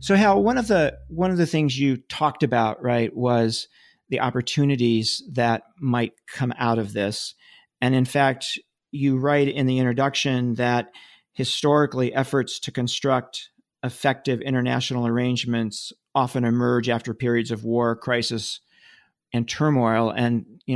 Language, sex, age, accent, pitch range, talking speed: English, male, 40-59, American, 120-145 Hz, 140 wpm